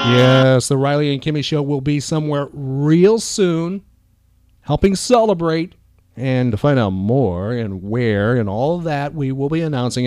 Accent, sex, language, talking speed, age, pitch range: American, male, English, 165 wpm, 40-59, 115-180 Hz